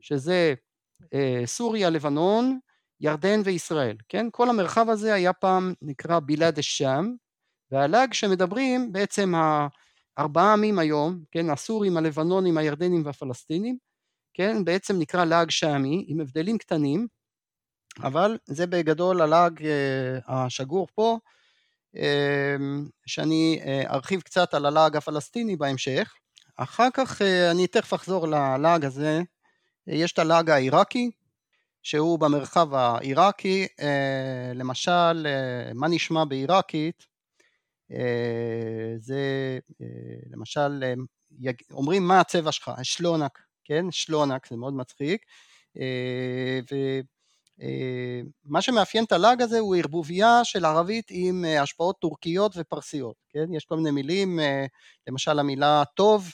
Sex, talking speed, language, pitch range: male, 115 wpm, Hebrew, 140-185 Hz